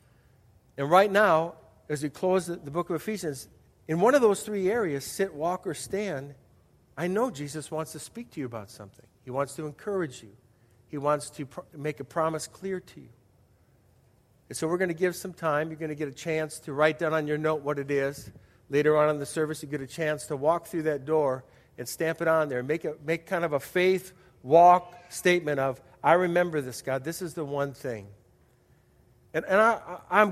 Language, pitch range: English, 125-170 Hz